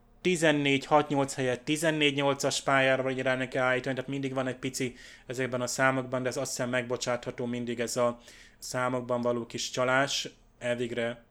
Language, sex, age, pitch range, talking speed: Hungarian, male, 20-39, 120-135 Hz, 155 wpm